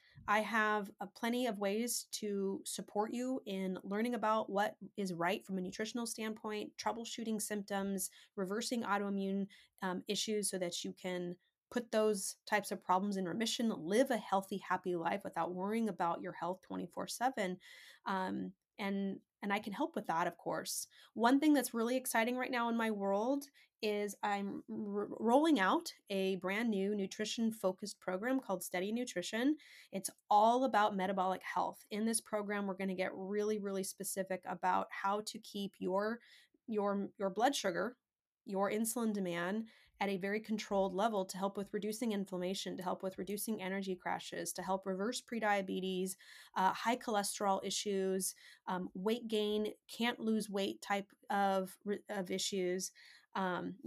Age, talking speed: 20-39, 155 wpm